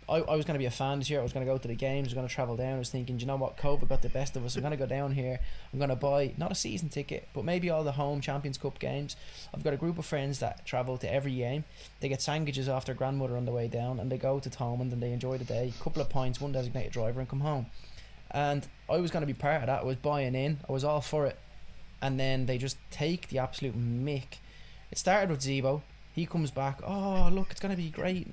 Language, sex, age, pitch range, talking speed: English, male, 20-39, 130-165 Hz, 295 wpm